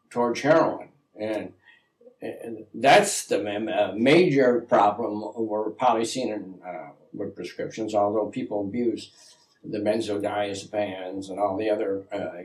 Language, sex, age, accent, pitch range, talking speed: English, male, 60-79, American, 105-130 Hz, 115 wpm